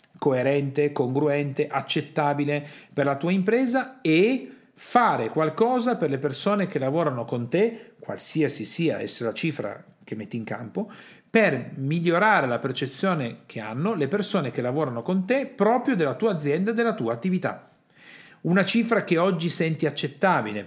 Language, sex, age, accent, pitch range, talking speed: Italian, male, 50-69, native, 135-190 Hz, 150 wpm